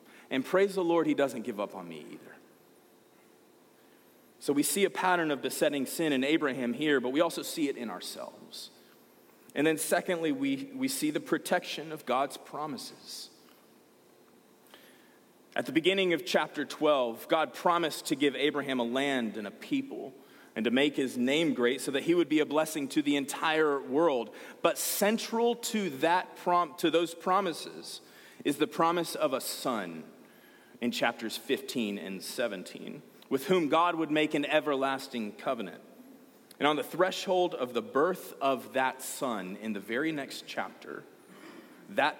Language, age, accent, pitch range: English, 30-49, American, 135-185 Hz